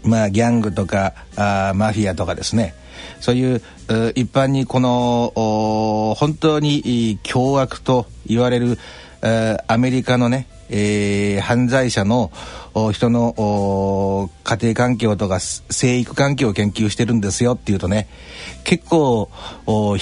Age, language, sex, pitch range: 60-79, Japanese, male, 100-135 Hz